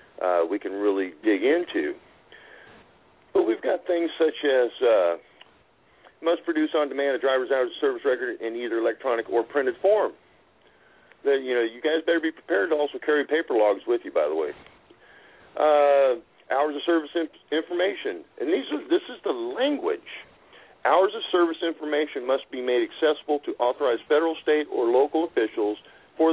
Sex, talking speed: male, 170 wpm